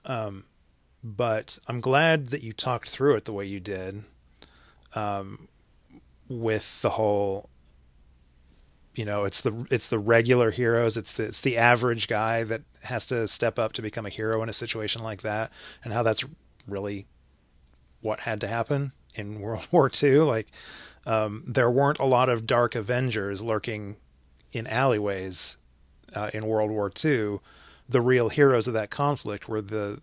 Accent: American